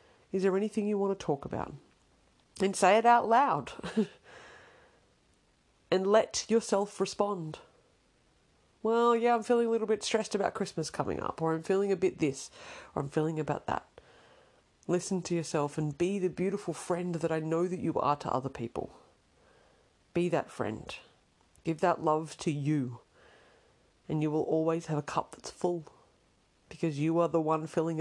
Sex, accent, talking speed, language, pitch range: female, Australian, 170 wpm, English, 150-195 Hz